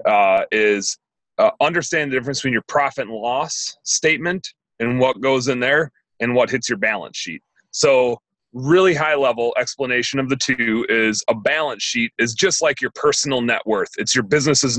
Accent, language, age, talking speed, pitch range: American, English, 30-49, 185 wpm, 125-160 Hz